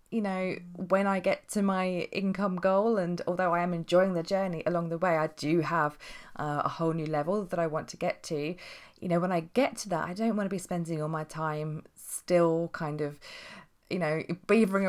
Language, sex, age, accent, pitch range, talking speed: English, female, 20-39, British, 160-190 Hz, 220 wpm